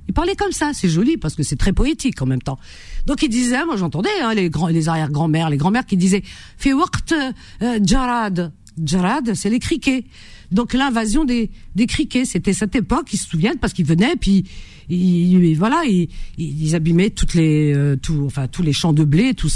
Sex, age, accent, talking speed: female, 50-69, French, 210 wpm